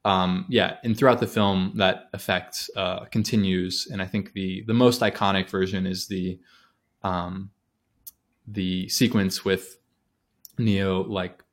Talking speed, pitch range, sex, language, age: 135 wpm, 95-105 Hz, male, English, 20-39